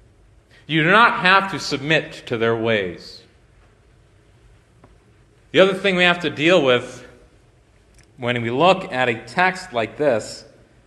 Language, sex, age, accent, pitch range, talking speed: English, male, 30-49, American, 120-170 Hz, 140 wpm